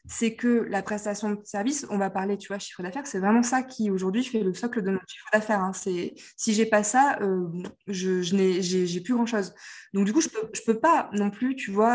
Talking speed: 275 wpm